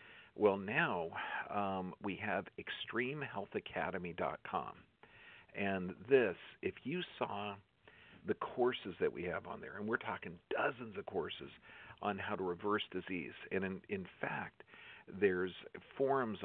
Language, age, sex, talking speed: English, 50-69, male, 130 wpm